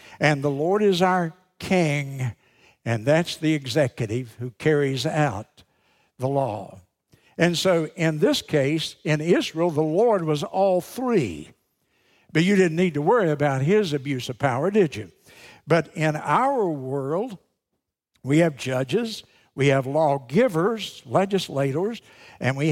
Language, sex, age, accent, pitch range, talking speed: English, male, 60-79, American, 135-185 Hz, 140 wpm